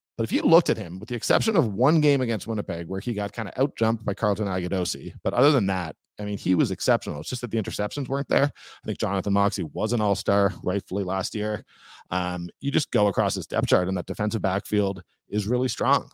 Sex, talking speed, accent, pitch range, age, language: male, 240 wpm, American, 100-125 Hz, 40-59, English